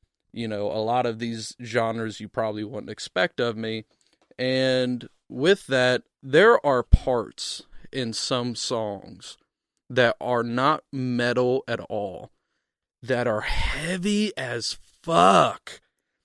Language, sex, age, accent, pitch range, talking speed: English, male, 30-49, American, 115-135 Hz, 120 wpm